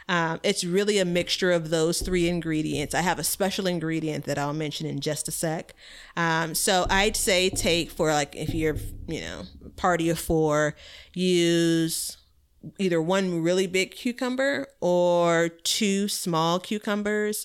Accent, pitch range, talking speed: American, 160-190 Hz, 155 wpm